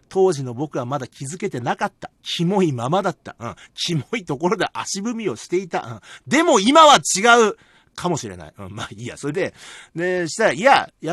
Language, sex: Japanese, male